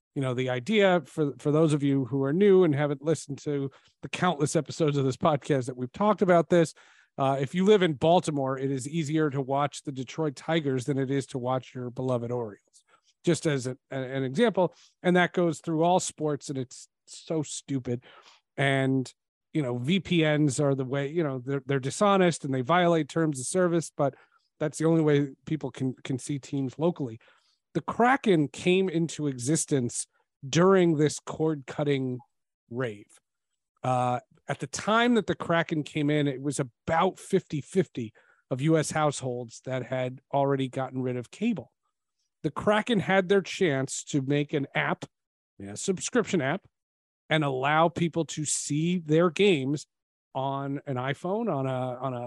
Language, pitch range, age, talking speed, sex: English, 135-170 Hz, 40-59, 175 wpm, male